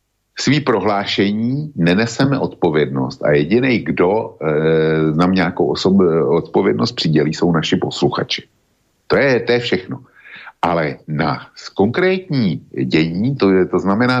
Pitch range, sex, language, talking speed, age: 80-120 Hz, male, Slovak, 125 wpm, 50-69